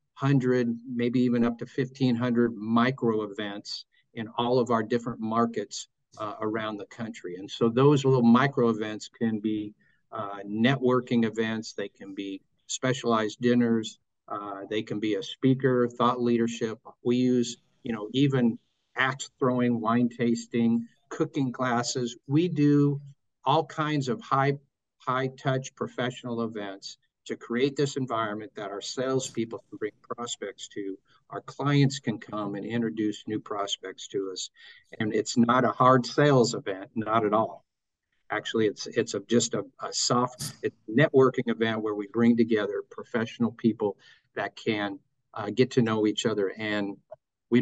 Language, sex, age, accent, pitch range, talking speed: English, male, 50-69, American, 110-130 Hz, 150 wpm